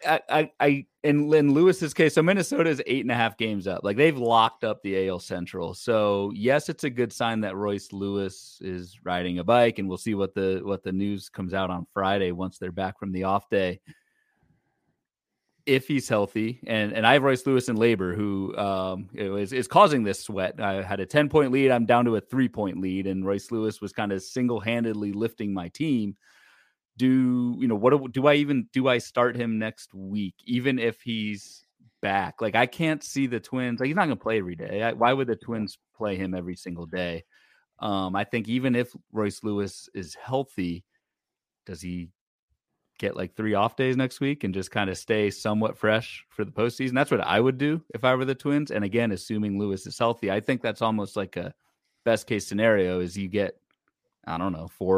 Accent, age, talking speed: American, 30-49, 215 wpm